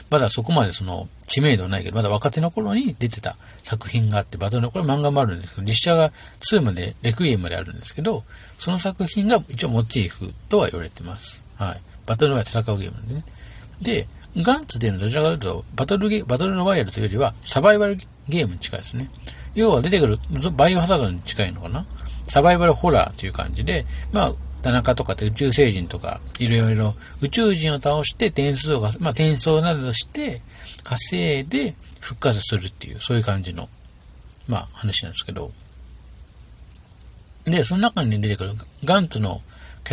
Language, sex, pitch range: Japanese, male, 95-155 Hz